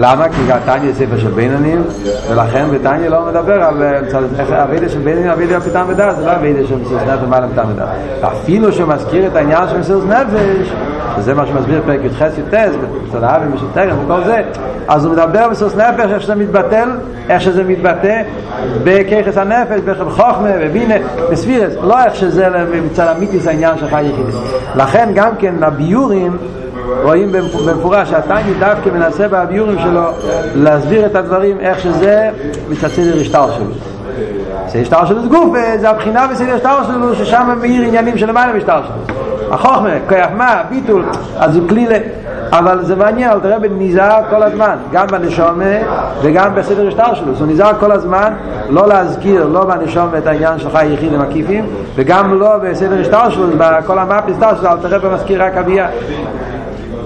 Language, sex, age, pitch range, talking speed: Hebrew, male, 60-79, 155-205 Hz, 110 wpm